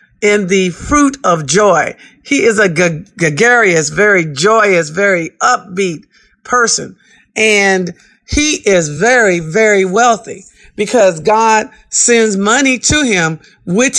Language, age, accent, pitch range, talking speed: English, 50-69, American, 190-235 Hz, 115 wpm